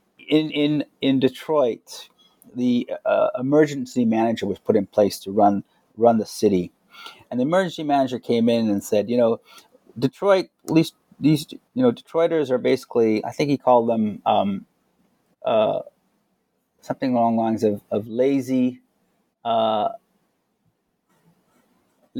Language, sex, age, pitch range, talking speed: English, male, 30-49, 110-160 Hz, 135 wpm